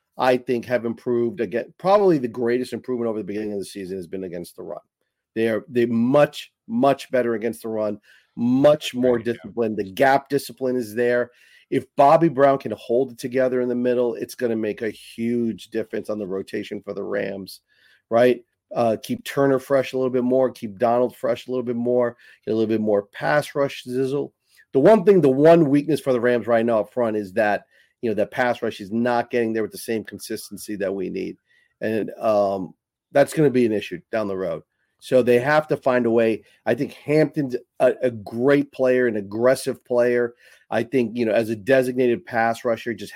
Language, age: English, 40-59